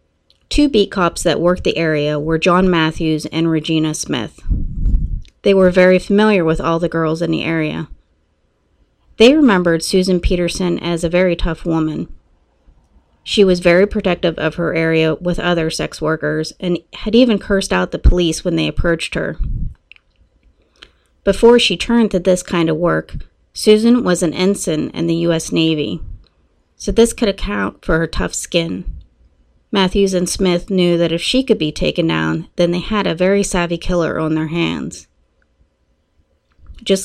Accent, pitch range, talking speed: American, 155-185 Hz, 165 wpm